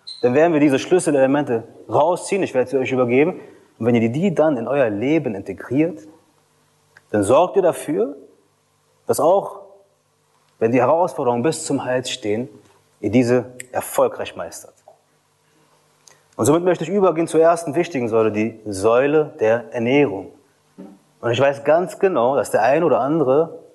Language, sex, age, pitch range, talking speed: German, male, 30-49, 125-165 Hz, 150 wpm